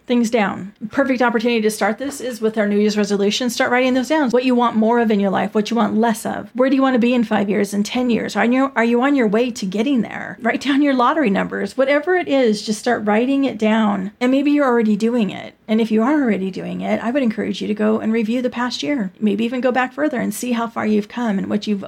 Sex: female